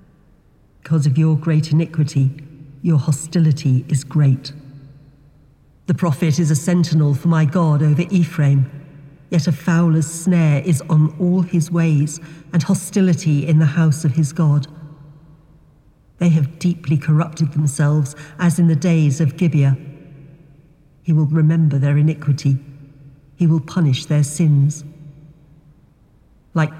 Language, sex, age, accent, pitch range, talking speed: English, female, 50-69, British, 150-165 Hz, 130 wpm